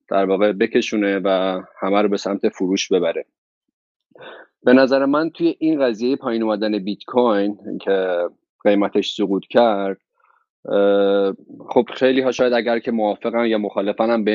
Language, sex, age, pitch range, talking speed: Persian, male, 30-49, 100-115 Hz, 140 wpm